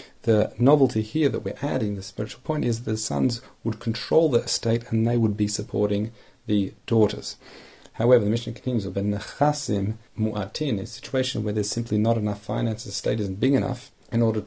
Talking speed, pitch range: 190 wpm, 105-120 Hz